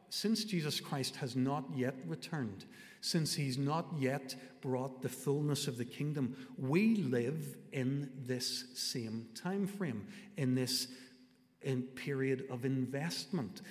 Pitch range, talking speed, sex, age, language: 125-160 Hz, 125 wpm, male, 60-79, English